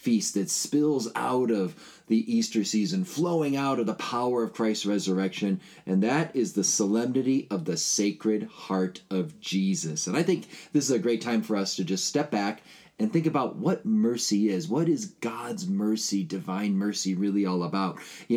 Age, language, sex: 30-49, English, male